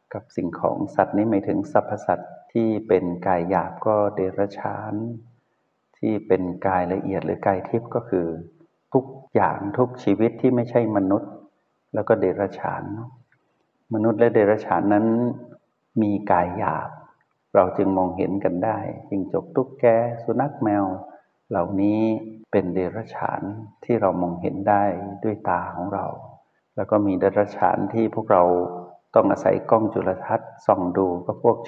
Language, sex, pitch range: Thai, male, 95-115 Hz